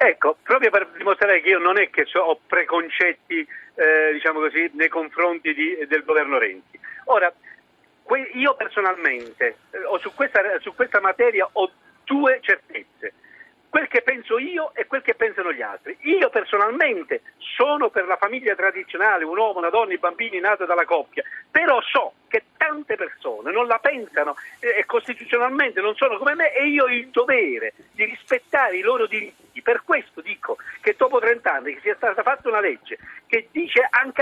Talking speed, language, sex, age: 170 wpm, Italian, male, 50-69